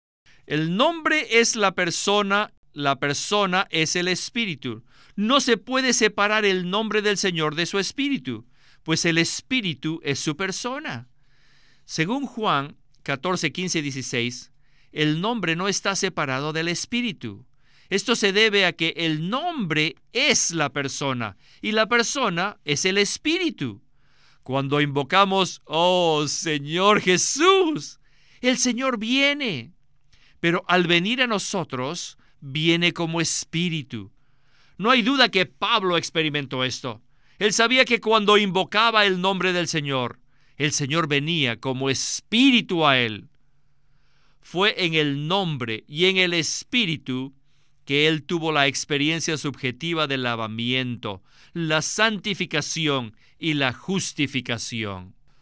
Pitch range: 140-200 Hz